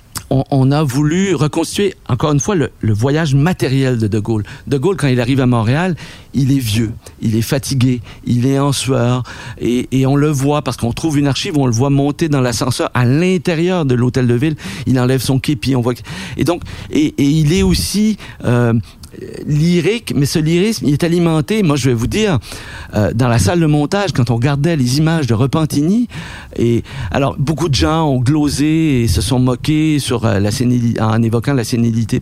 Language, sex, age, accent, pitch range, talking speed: French, male, 50-69, French, 120-155 Hz, 210 wpm